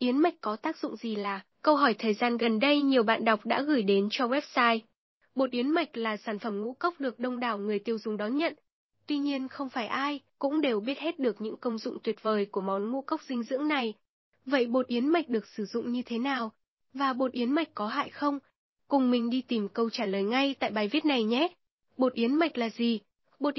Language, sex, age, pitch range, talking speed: Vietnamese, female, 10-29, 220-280 Hz, 240 wpm